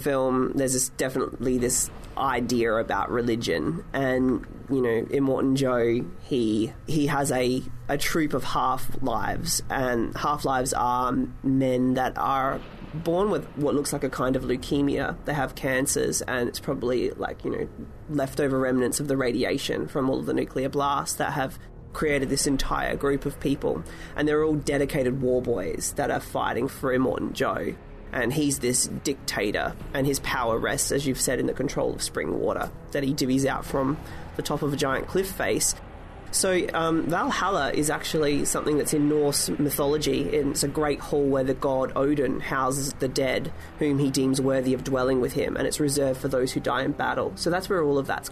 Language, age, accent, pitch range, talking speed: English, 20-39, Australian, 130-145 Hz, 185 wpm